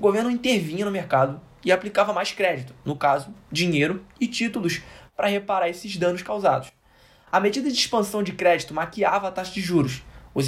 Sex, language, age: male, Portuguese, 10-29